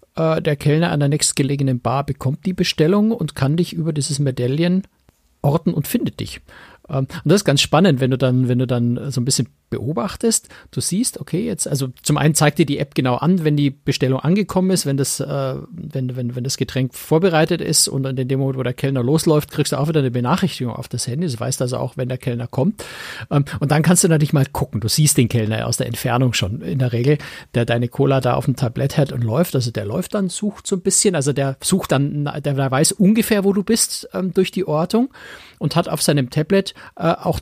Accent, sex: German, male